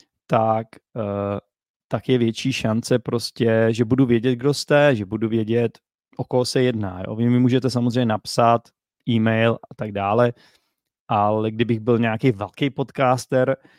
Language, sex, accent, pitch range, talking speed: Czech, male, native, 115-130 Hz, 150 wpm